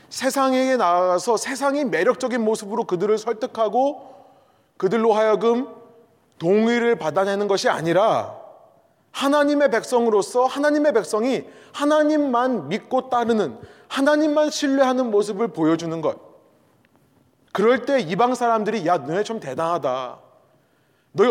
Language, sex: Korean, male